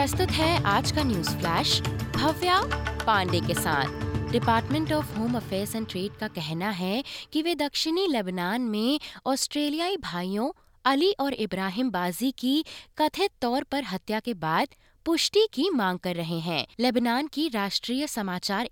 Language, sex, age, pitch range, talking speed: Hindi, female, 20-39, 200-290 Hz, 150 wpm